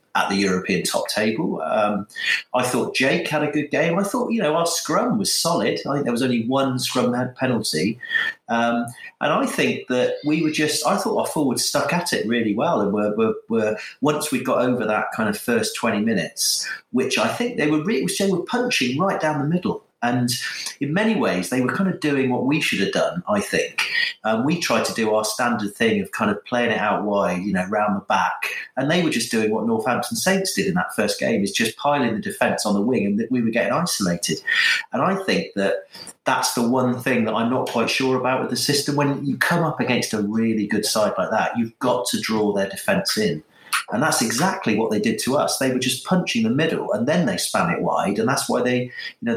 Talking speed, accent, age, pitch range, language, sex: 240 wpm, British, 40-59, 115-185 Hz, English, male